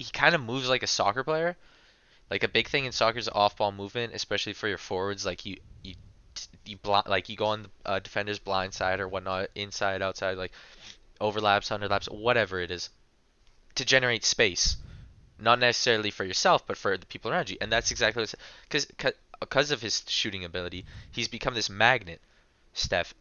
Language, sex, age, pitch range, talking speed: English, male, 20-39, 100-135 Hz, 190 wpm